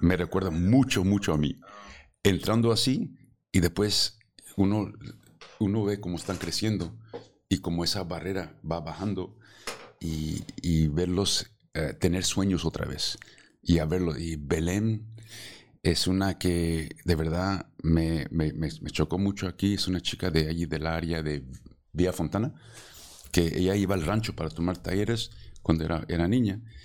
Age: 50-69